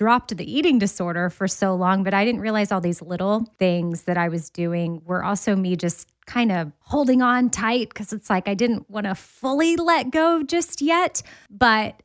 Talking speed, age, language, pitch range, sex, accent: 205 wpm, 20-39, English, 175-220 Hz, female, American